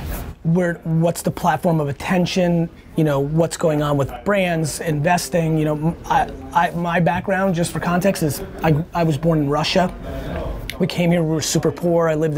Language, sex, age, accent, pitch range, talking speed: English, male, 30-49, American, 145-165 Hz, 190 wpm